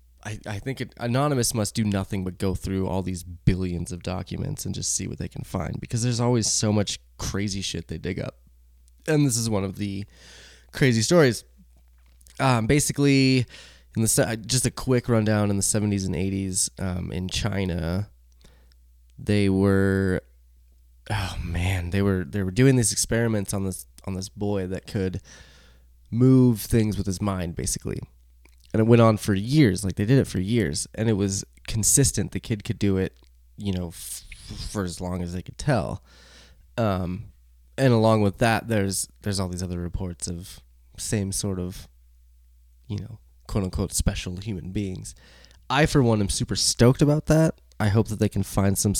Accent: American